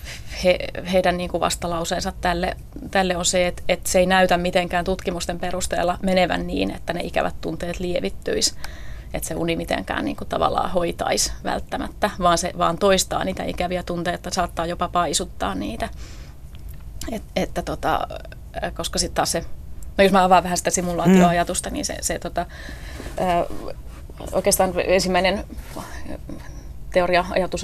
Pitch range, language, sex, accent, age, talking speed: 165-180 Hz, Finnish, female, native, 30-49, 140 wpm